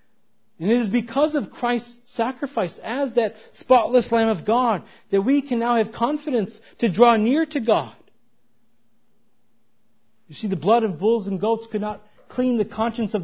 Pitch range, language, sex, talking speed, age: 205-255 Hz, English, male, 170 wpm, 40-59